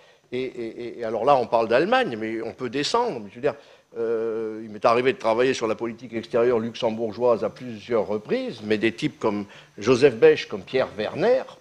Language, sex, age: French, male, 50-69